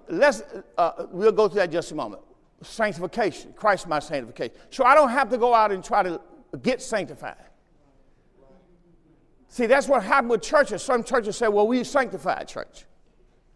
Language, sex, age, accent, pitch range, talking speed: English, male, 50-69, American, 180-245 Hz, 175 wpm